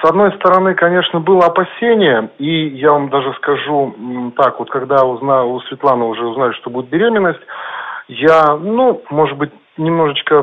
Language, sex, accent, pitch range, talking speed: Russian, male, native, 130-180 Hz, 155 wpm